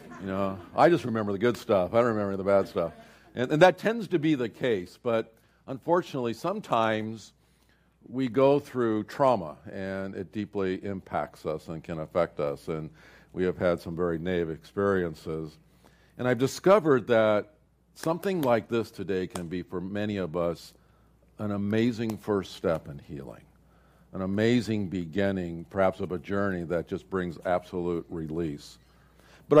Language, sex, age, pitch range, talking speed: English, male, 50-69, 95-125 Hz, 160 wpm